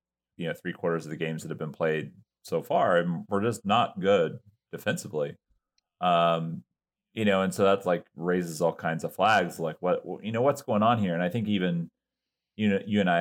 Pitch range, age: 85-105 Hz, 30-49